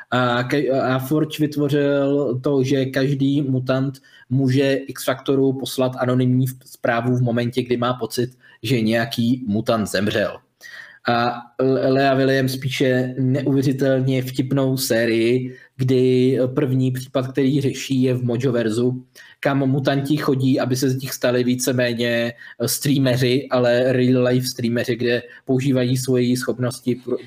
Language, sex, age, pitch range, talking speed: Czech, male, 20-39, 120-130 Hz, 130 wpm